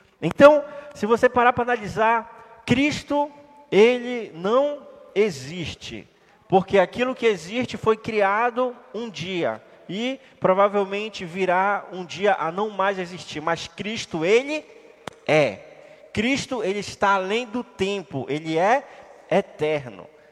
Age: 20-39